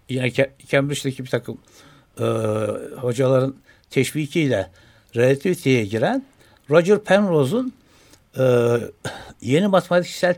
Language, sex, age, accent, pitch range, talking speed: Turkish, male, 60-79, native, 120-175 Hz, 80 wpm